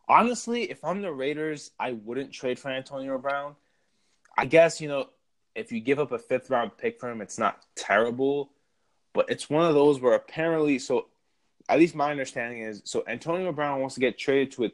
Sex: male